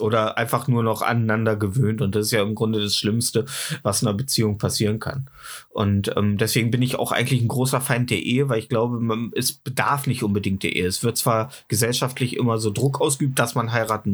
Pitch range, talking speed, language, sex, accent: 110-145 Hz, 225 wpm, German, male, German